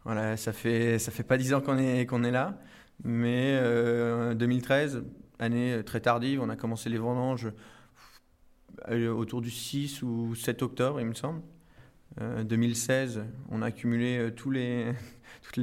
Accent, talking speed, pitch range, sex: French, 160 wpm, 115-130 Hz, male